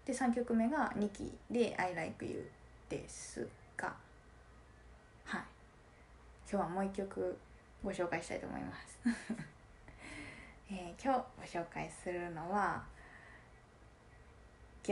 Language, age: Japanese, 20-39